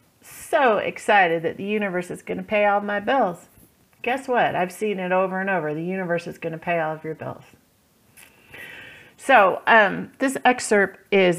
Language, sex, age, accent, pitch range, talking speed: English, female, 40-59, American, 165-220 Hz, 175 wpm